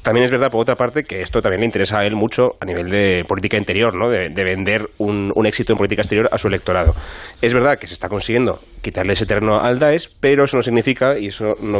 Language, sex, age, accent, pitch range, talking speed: Spanish, male, 30-49, Spanish, 105-130 Hz, 255 wpm